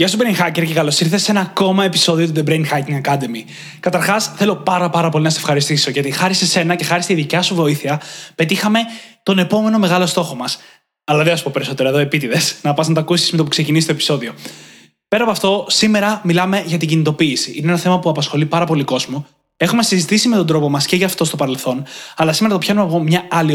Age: 20-39